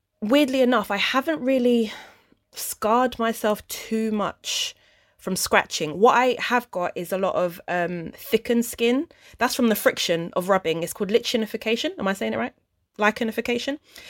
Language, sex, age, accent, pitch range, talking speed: English, female, 20-39, British, 180-235 Hz, 160 wpm